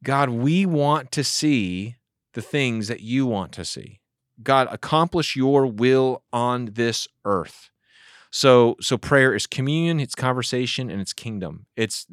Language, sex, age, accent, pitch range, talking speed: English, male, 30-49, American, 100-130 Hz, 150 wpm